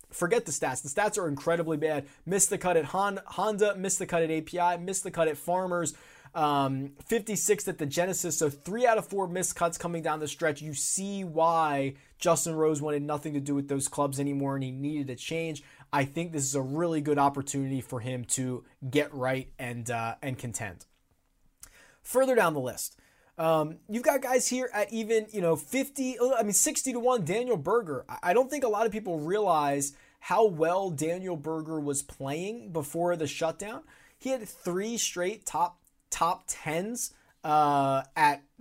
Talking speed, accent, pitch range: 190 wpm, American, 145-210 Hz